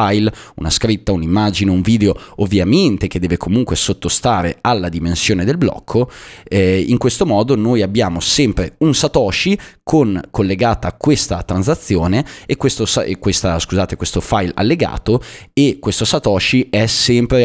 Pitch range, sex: 90-110 Hz, male